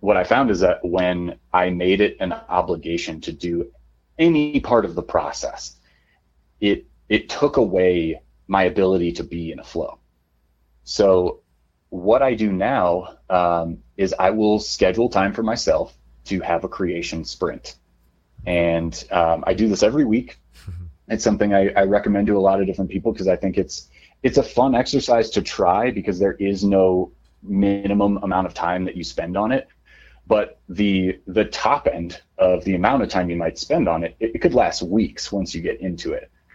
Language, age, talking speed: English, 30-49, 185 wpm